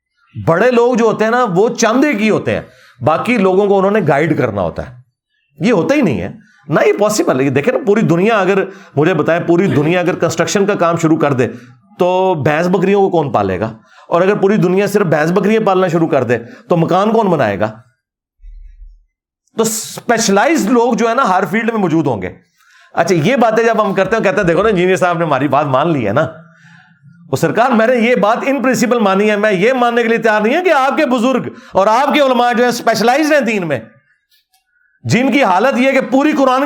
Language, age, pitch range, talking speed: Urdu, 40-59, 165-245 Hz, 205 wpm